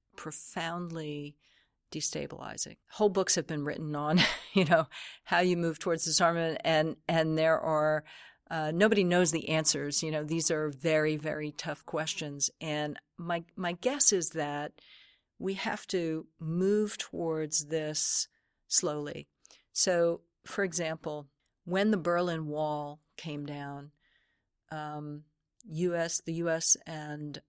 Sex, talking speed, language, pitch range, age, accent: female, 130 wpm, English, 150-175 Hz, 50-69, American